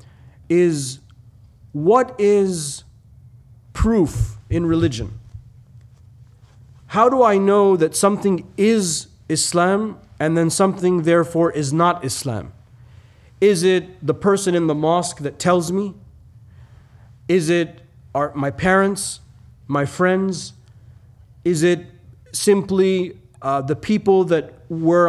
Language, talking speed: English, 110 wpm